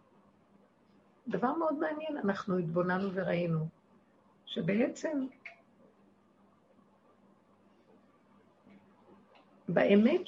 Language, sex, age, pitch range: Hebrew, female, 50-69, 195-235 Hz